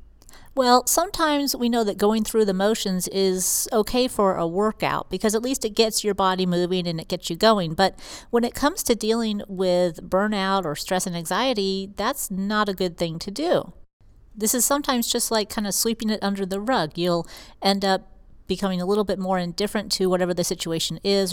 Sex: female